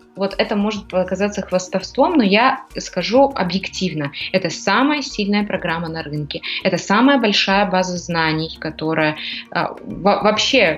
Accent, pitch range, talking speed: native, 175-215 Hz, 125 wpm